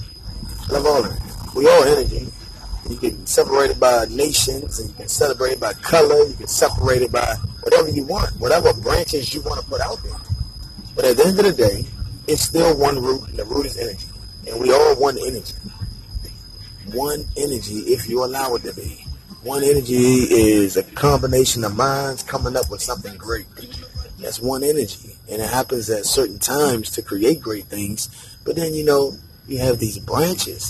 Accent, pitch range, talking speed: American, 105-140 Hz, 185 wpm